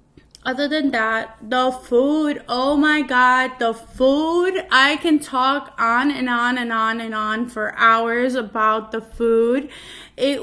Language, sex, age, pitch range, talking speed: English, female, 20-39, 235-275 Hz, 150 wpm